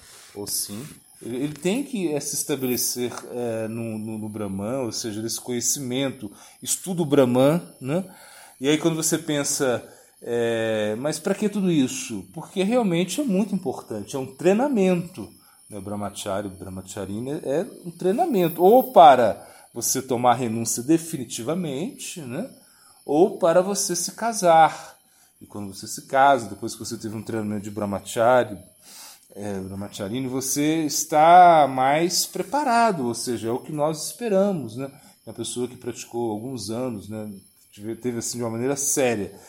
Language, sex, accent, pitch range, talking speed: Portuguese, male, Brazilian, 110-160 Hz, 155 wpm